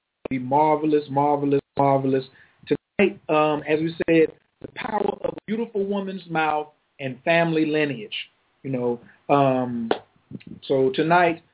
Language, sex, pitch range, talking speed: English, male, 150-195 Hz, 125 wpm